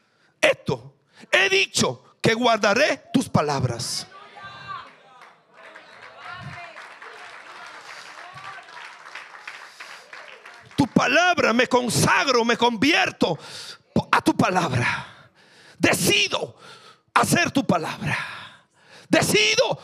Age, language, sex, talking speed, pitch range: 50-69, Spanish, male, 65 wpm, 210-290 Hz